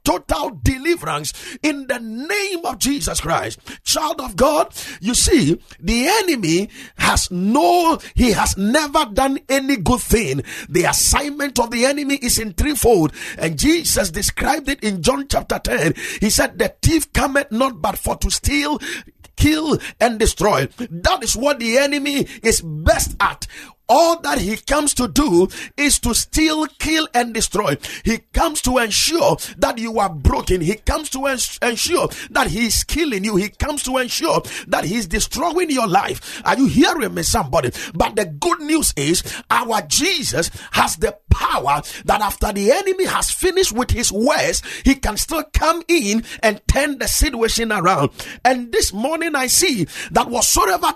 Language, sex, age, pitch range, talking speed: English, male, 50-69, 220-305 Hz, 165 wpm